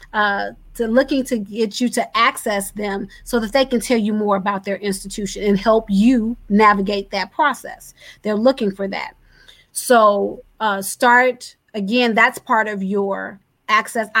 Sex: female